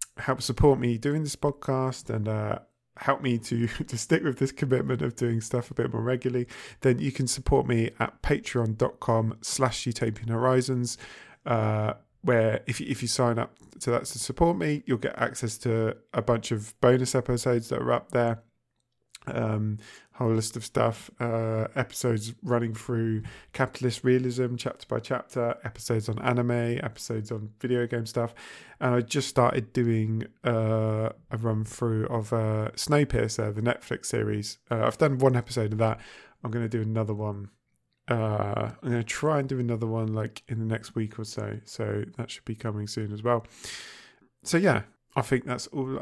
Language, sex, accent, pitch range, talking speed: English, male, British, 110-130 Hz, 180 wpm